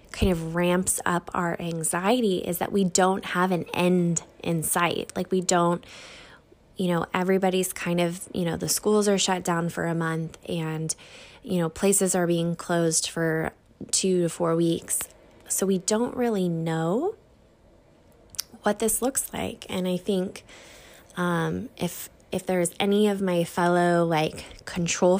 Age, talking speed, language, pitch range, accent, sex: 20-39, 160 wpm, English, 170-205 Hz, American, female